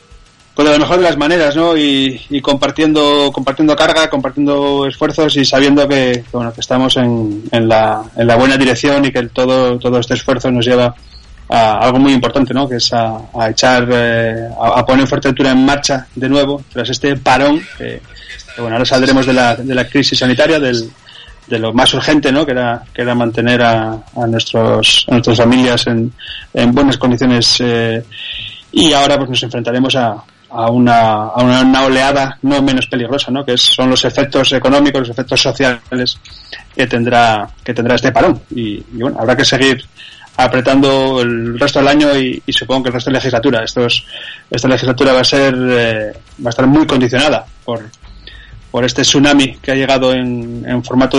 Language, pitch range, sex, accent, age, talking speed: Spanish, 120-140 Hz, male, Spanish, 20-39, 190 wpm